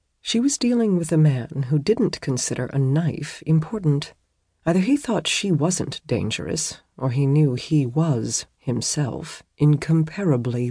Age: 40-59